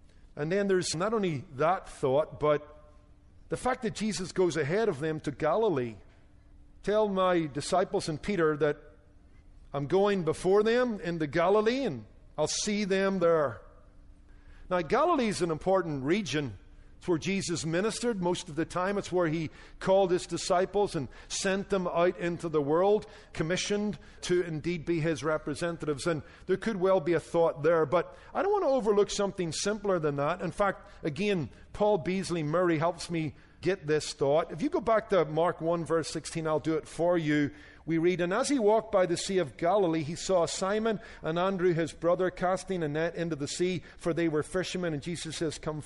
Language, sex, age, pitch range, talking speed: English, male, 50-69, 155-200 Hz, 185 wpm